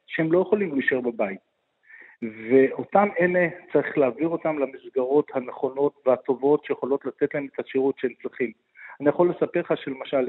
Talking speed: 145 wpm